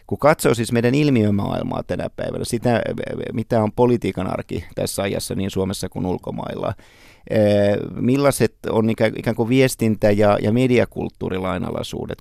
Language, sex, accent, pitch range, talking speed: Finnish, male, native, 100-120 Hz, 130 wpm